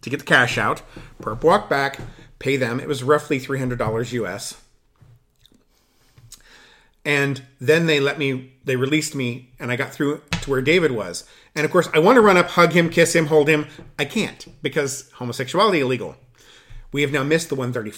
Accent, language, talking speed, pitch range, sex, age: American, English, 185 wpm, 120-145 Hz, male, 40-59